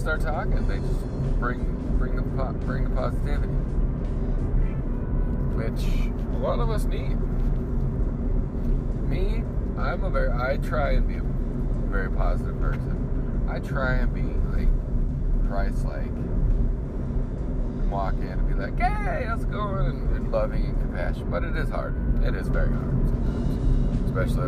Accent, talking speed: American, 140 wpm